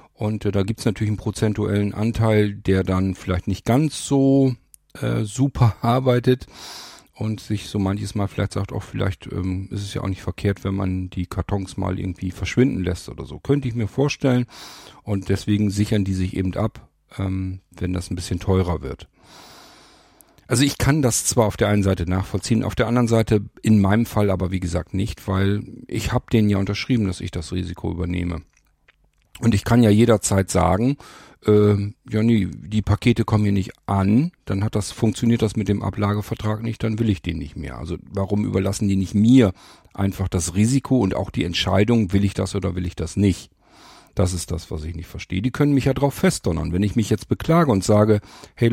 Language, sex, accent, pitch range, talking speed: German, male, German, 95-115 Hz, 200 wpm